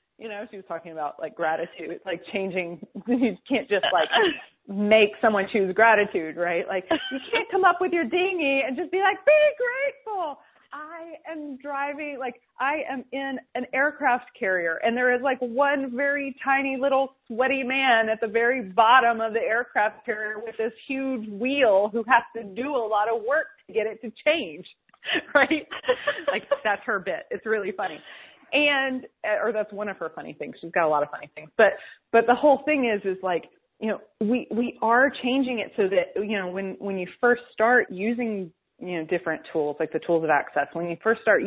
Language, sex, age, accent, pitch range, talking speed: English, female, 30-49, American, 200-270 Hz, 200 wpm